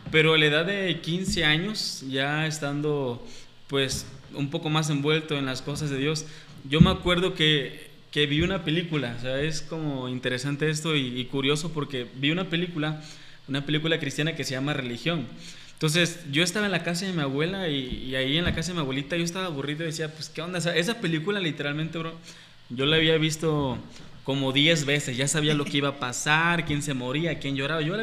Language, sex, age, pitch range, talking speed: Spanish, male, 20-39, 145-170 Hz, 215 wpm